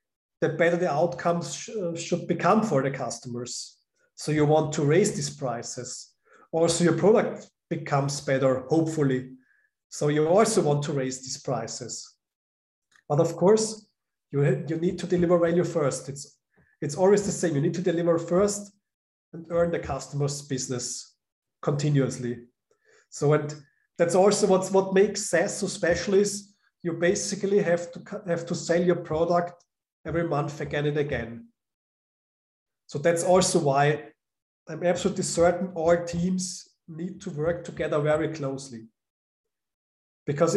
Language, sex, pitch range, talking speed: English, male, 145-180 Hz, 145 wpm